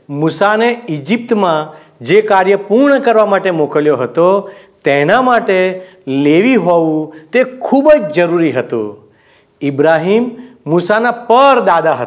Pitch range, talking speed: 160-240 Hz, 95 wpm